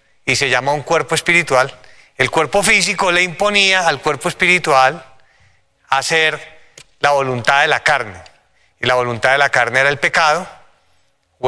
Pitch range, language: 130-180 Hz, Spanish